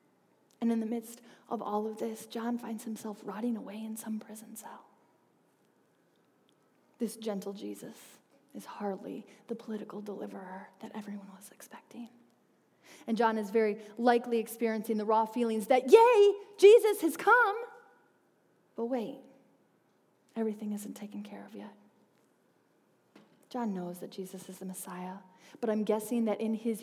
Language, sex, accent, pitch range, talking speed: English, female, American, 210-270 Hz, 145 wpm